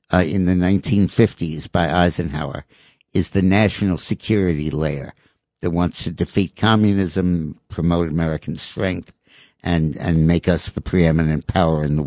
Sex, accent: male, American